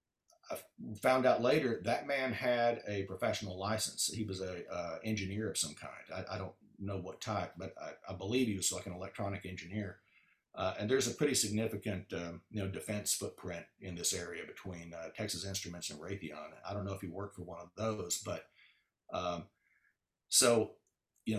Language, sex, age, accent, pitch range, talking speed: English, male, 50-69, American, 95-120 Hz, 190 wpm